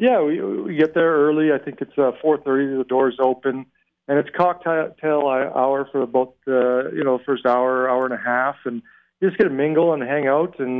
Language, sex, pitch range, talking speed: English, male, 125-145 Hz, 215 wpm